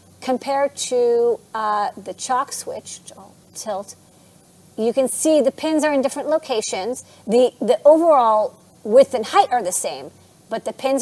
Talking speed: 165 wpm